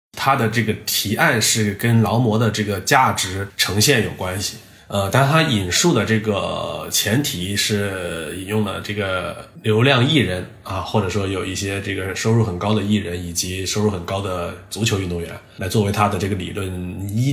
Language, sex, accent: Chinese, male, native